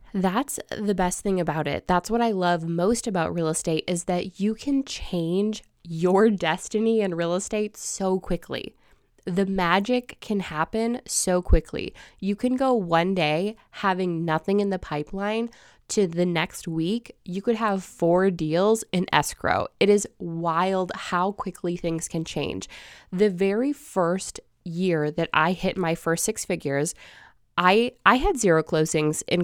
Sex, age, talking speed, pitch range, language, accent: female, 20-39, 160 wpm, 170-210 Hz, English, American